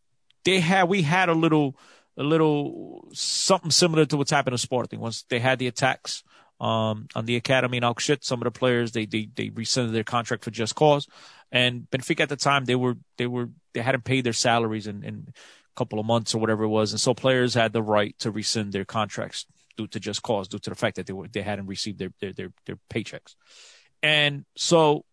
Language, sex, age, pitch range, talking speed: English, male, 30-49, 115-145 Hz, 225 wpm